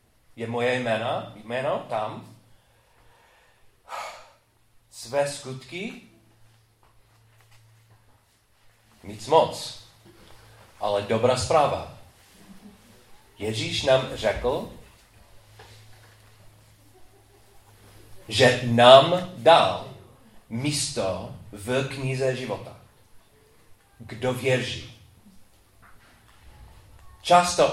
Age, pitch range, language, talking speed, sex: 40-59, 110-150 Hz, Czech, 55 wpm, male